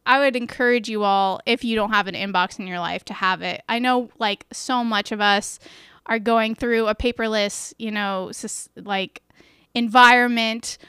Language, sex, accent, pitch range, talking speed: English, female, American, 205-250 Hz, 180 wpm